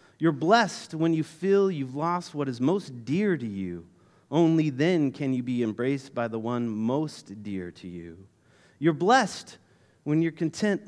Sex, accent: male, American